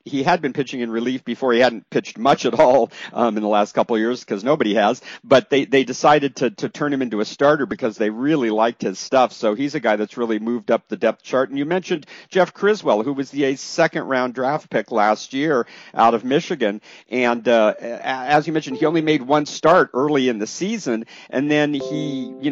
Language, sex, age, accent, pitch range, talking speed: English, male, 50-69, American, 115-150 Hz, 230 wpm